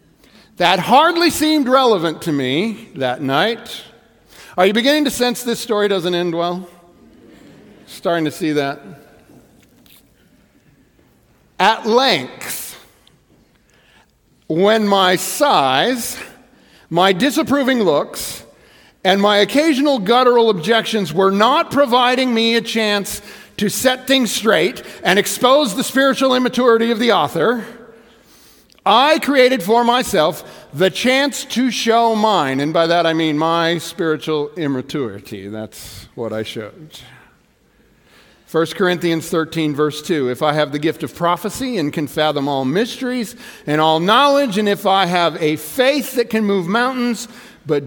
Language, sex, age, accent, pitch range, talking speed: English, male, 50-69, American, 165-245 Hz, 130 wpm